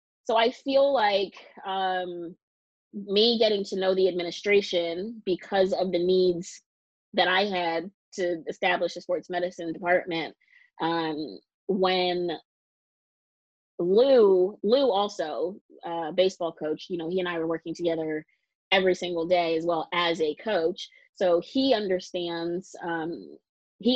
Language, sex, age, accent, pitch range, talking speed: English, female, 20-39, American, 170-205 Hz, 135 wpm